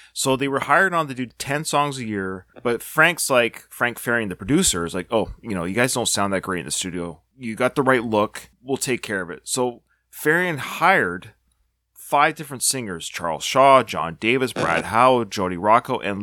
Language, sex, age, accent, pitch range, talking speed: English, male, 30-49, American, 95-135 Hz, 210 wpm